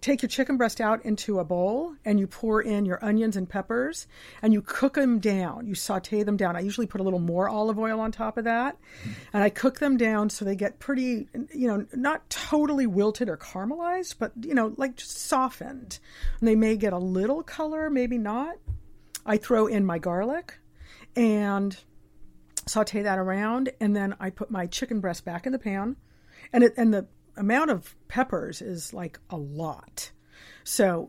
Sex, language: female, English